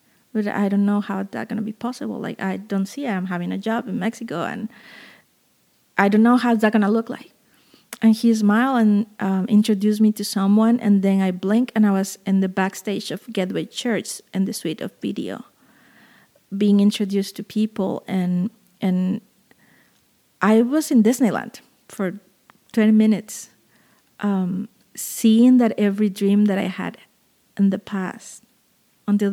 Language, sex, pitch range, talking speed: English, female, 195-225 Hz, 165 wpm